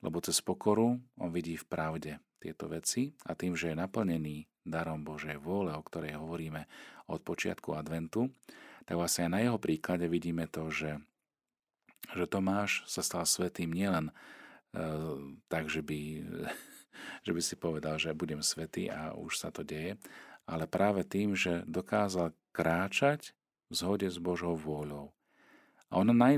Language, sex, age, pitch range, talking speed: Slovak, male, 40-59, 80-95 Hz, 150 wpm